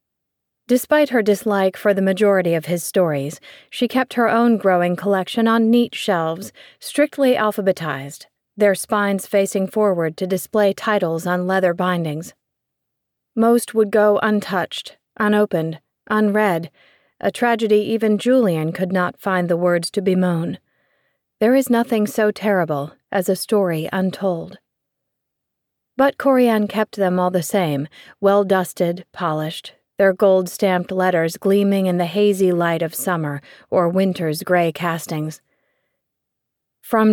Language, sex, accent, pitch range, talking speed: English, female, American, 175-215 Hz, 130 wpm